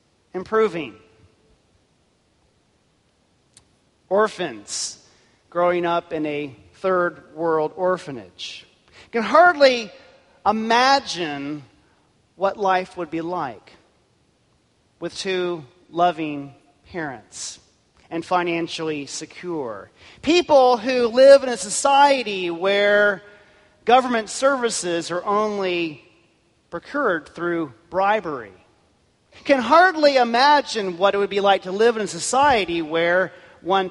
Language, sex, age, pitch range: English, male, 40-59, 150-205 Hz